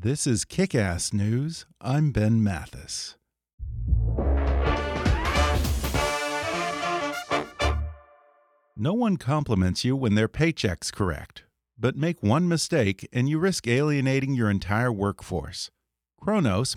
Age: 50-69